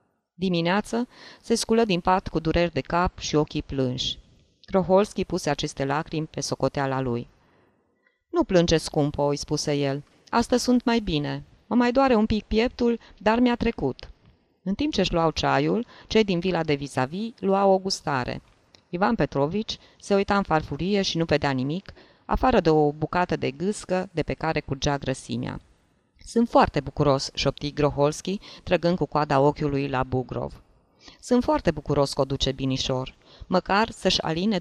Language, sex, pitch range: Romanian, female, 140-205 Hz